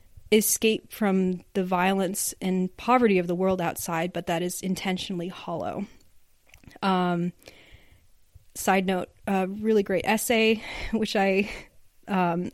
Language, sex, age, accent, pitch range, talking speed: English, female, 30-49, American, 180-215 Hz, 120 wpm